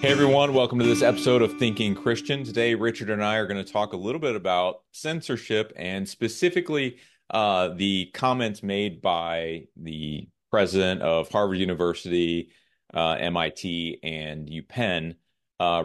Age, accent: 30-49, American